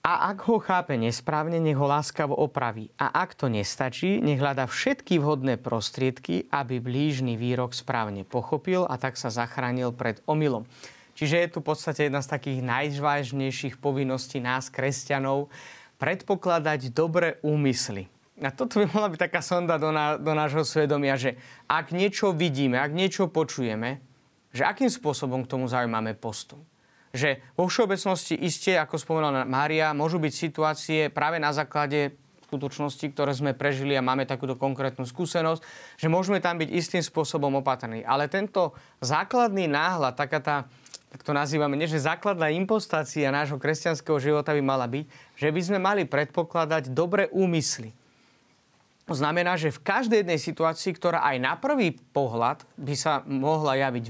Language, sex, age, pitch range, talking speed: Slovak, male, 30-49, 130-165 Hz, 155 wpm